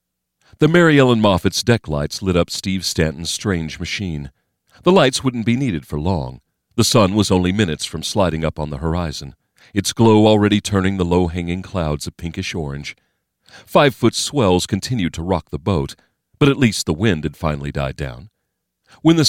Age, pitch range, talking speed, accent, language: 40-59, 80-110 Hz, 175 wpm, American, English